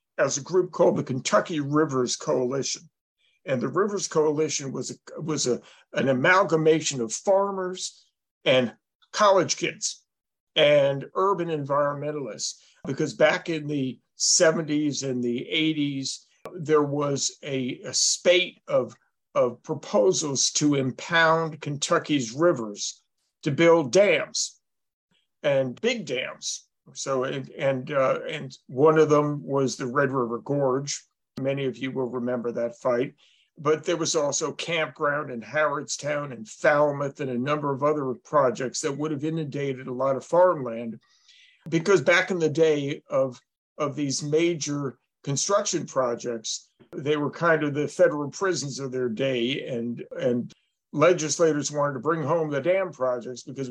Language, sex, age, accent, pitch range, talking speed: English, male, 50-69, American, 130-160 Hz, 140 wpm